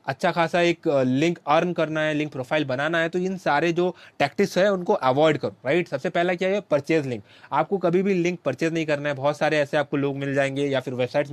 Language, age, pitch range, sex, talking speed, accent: Hindi, 20-39, 140-175 Hz, male, 240 wpm, native